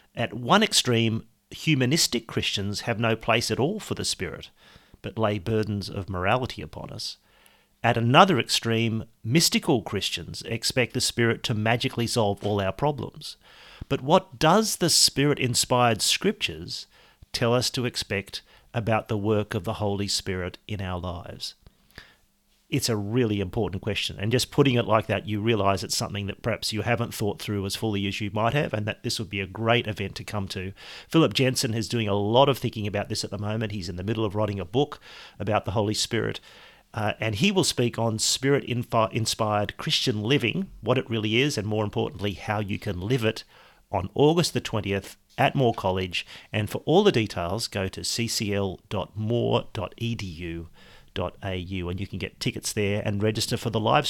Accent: Australian